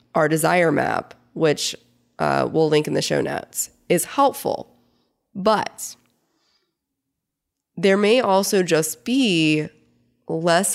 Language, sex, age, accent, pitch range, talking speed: English, female, 20-39, American, 150-190 Hz, 110 wpm